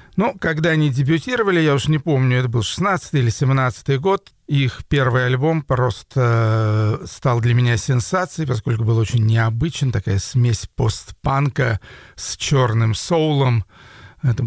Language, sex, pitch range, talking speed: Russian, male, 115-150 Hz, 135 wpm